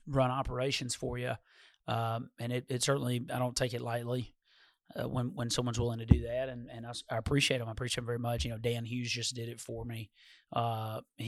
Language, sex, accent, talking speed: English, male, American, 225 wpm